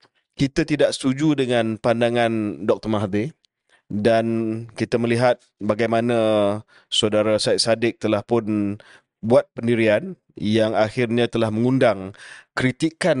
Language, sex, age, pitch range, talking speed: Malay, male, 20-39, 105-125 Hz, 105 wpm